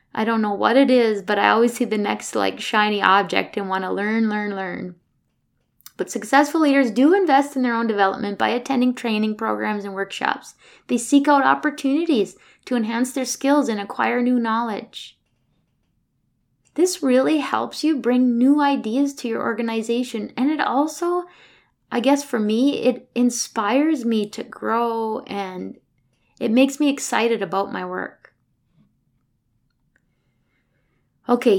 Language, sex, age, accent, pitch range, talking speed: English, female, 20-39, American, 215-270 Hz, 150 wpm